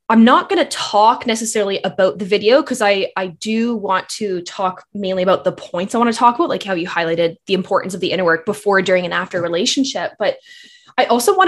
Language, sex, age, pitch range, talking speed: English, female, 10-29, 200-270 Hz, 230 wpm